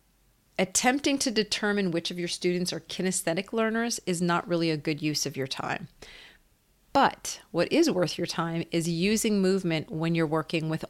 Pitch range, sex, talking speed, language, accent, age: 155-180 Hz, female, 175 wpm, English, American, 40-59